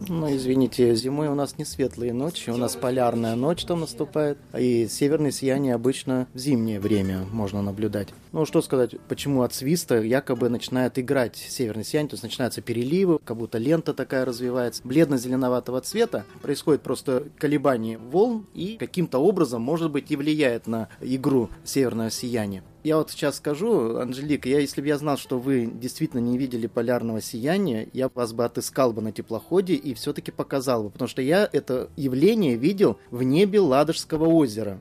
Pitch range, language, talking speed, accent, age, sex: 120-160 Hz, Russian, 170 wpm, native, 20-39, male